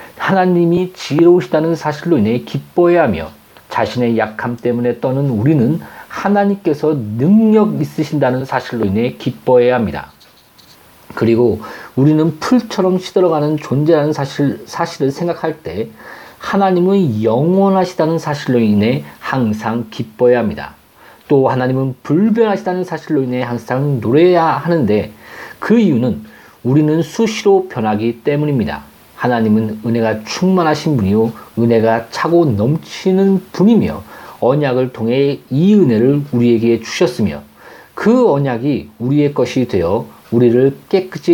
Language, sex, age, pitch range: Korean, male, 40-59, 115-170 Hz